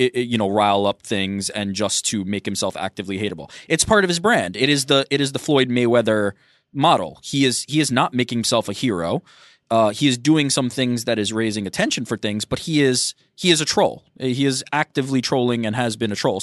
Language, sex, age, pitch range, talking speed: English, male, 20-39, 105-130 Hz, 235 wpm